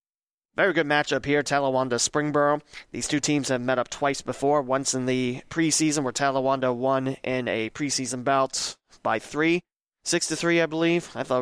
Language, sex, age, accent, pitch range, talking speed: English, male, 30-49, American, 125-155 Hz, 180 wpm